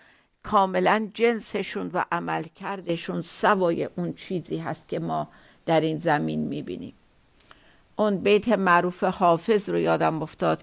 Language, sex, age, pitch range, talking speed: Persian, female, 50-69, 155-195 Hz, 120 wpm